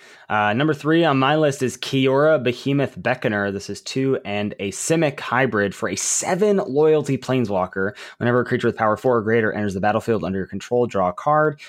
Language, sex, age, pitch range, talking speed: English, male, 20-39, 110-145 Hz, 200 wpm